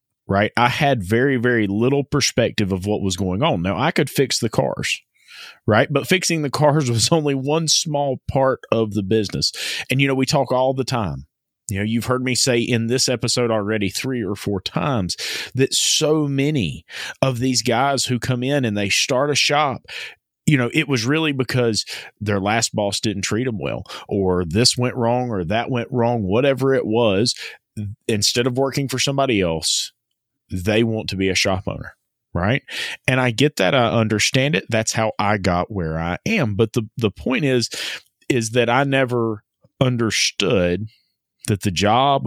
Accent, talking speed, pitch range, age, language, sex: American, 185 wpm, 105-135 Hz, 30-49, English, male